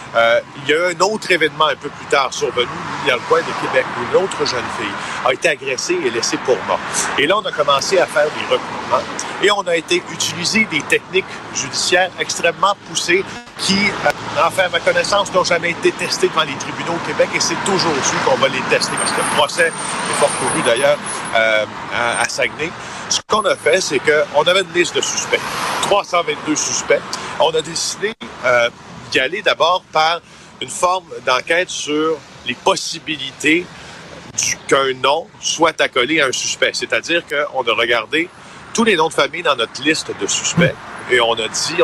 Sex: male